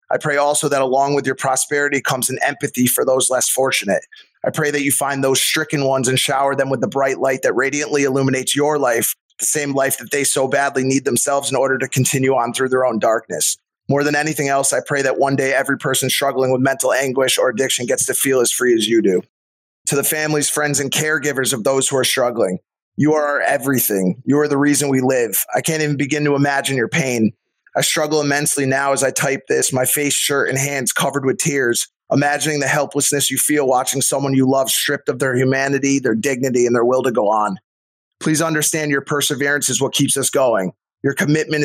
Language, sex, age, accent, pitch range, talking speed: English, male, 20-39, American, 130-145 Hz, 220 wpm